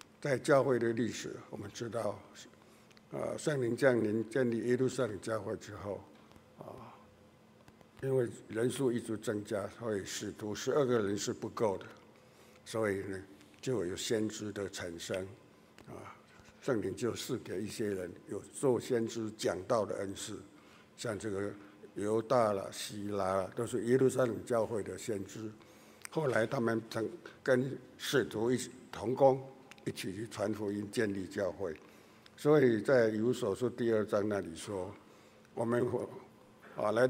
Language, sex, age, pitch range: Chinese, male, 60-79, 100-120 Hz